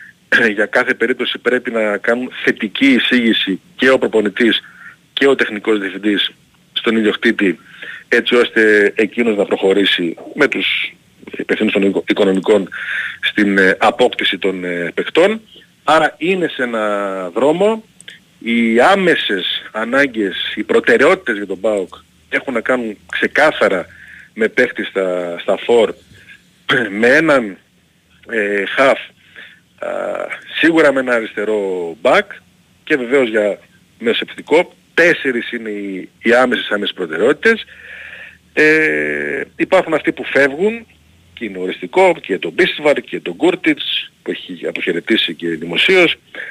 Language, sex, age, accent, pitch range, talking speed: Greek, male, 40-59, native, 100-160 Hz, 120 wpm